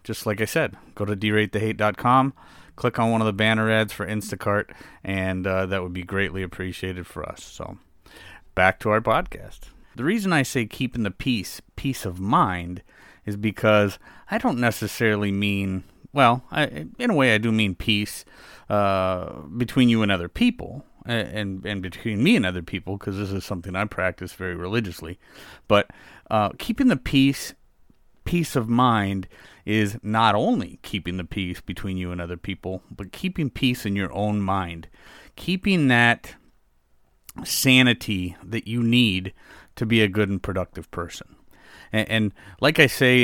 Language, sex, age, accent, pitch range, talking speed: English, male, 30-49, American, 95-115 Hz, 170 wpm